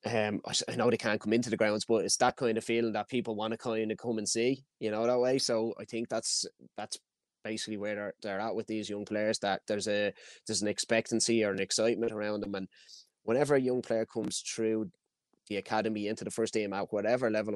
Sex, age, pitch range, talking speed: male, 20-39, 105-110 Hz, 235 wpm